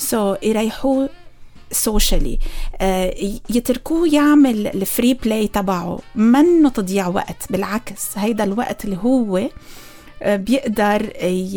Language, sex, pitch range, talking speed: Arabic, female, 195-260 Hz, 95 wpm